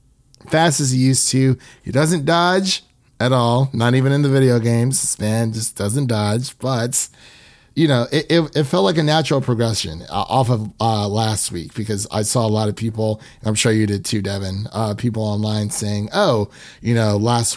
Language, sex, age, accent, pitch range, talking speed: English, male, 30-49, American, 105-130 Hz, 200 wpm